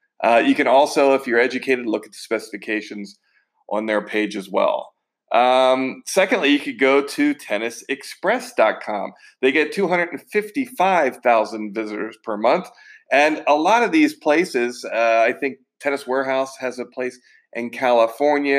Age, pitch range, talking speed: 40-59, 125-155 Hz, 145 wpm